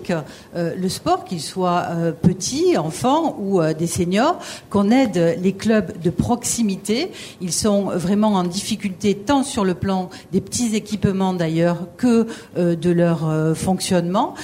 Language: French